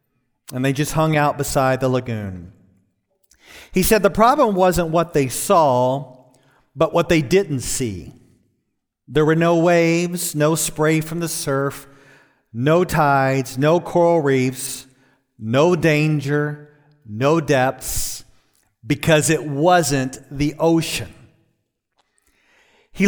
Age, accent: 40-59, American